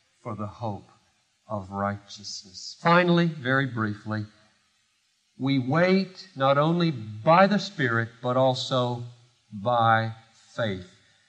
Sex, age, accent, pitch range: male, 50-69, American, 120-175 Hz